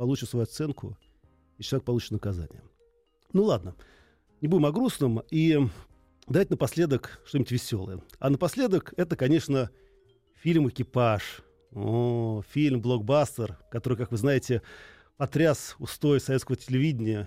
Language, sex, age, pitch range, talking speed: Russian, male, 40-59, 120-160 Hz, 120 wpm